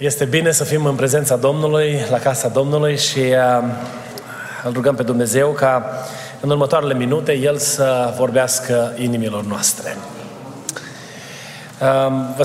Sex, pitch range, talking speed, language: male, 135-165 Hz, 120 wpm, Romanian